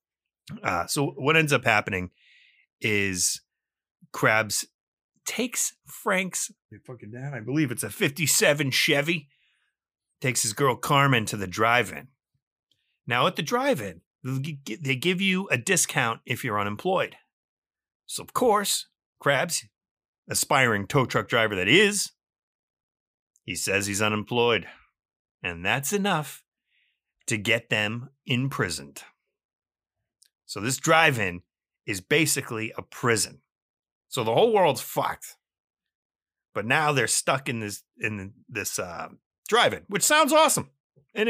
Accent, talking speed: American, 120 wpm